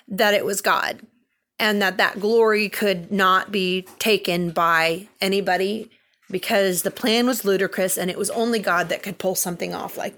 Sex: female